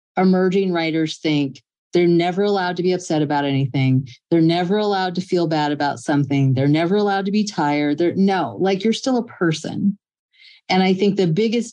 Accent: American